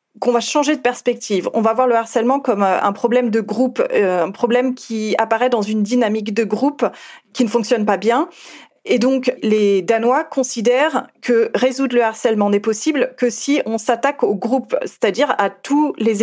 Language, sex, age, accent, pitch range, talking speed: French, female, 30-49, French, 215-260 Hz, 185 wpm